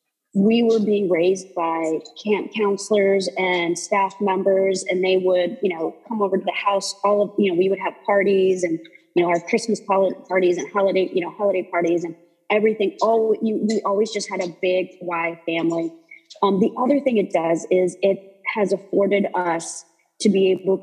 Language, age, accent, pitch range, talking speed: English, 30-49, American, 175-205 Hz, 185 wpm